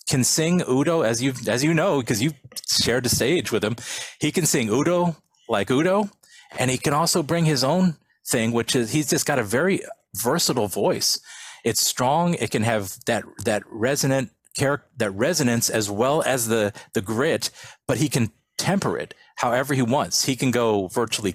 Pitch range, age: 110-145 Hz, 40-59